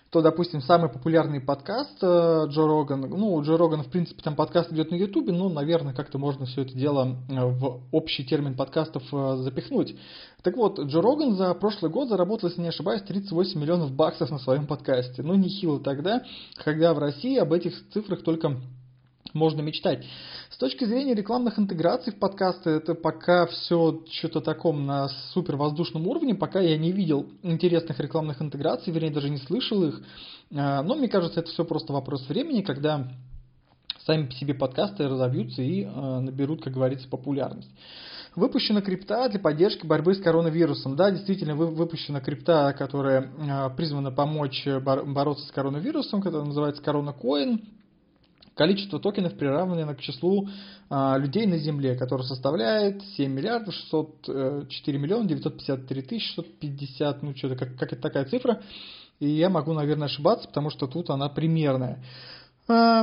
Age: 20-39